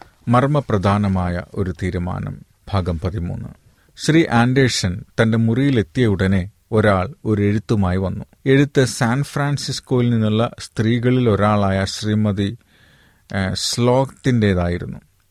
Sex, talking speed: male, 80 wpm